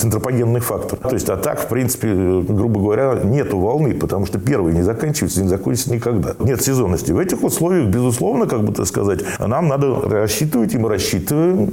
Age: 40-59